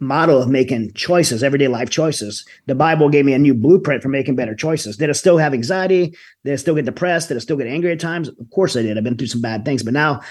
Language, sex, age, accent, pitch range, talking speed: English, male, 40-59, American, 105-140 Hz, 275 wpm